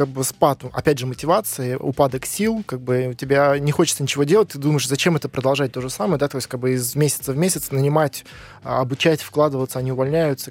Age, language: 20-39, Russian